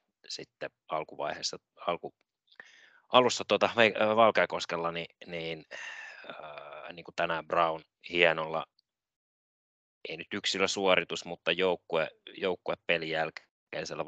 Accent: native